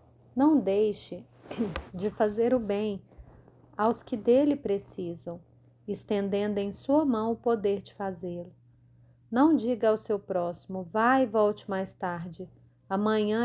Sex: female